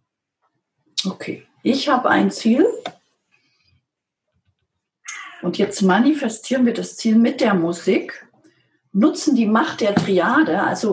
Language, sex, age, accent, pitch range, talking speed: German, female, 40-59, German, 195-280 Hz, 110 wpm